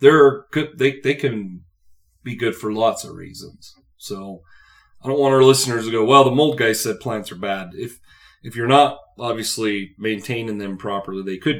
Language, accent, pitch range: English, American, 100-125 Hz